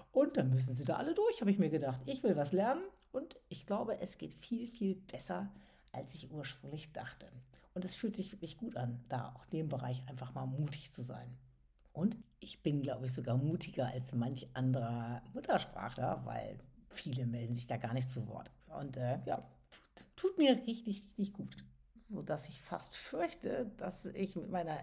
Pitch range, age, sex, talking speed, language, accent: 140-195 Hz, 60-79, female, 195 wpm, German, German